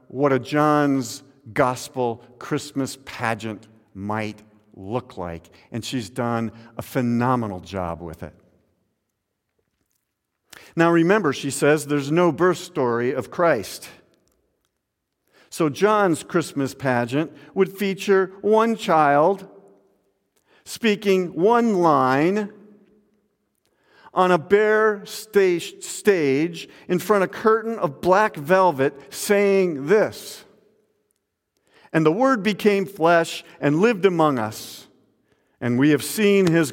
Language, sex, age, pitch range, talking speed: English, male, 50-69, 120-185 Hz, 110 wpm